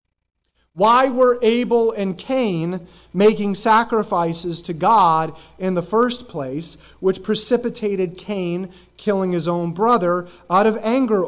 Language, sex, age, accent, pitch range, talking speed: English, male, 30-49, American, 165-220 Hz, 120 wpm